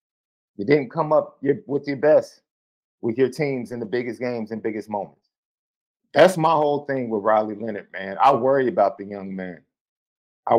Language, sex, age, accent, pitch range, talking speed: English, male, 50-69, American, 115-150 Hz, 185 wpm